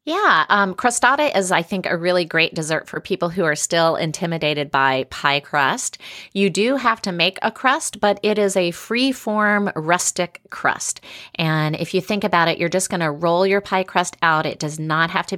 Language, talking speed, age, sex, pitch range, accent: English, 205 wpm, 30-49, female, 155-195 Hz, American